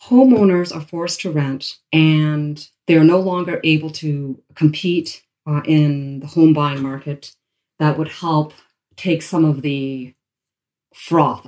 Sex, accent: female, American